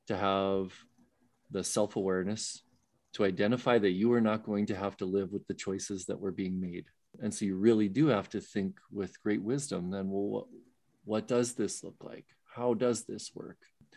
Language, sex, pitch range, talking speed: English, male, 100-120 Hz, 195 wpm